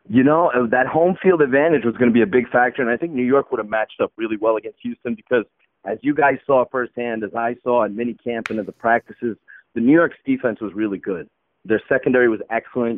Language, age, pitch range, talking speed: English, 30-49, 115-150 Hz, 245 wpm